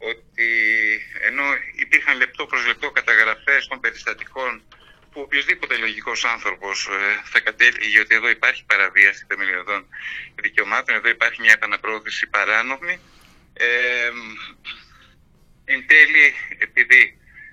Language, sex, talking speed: Greek, male, 105 wpm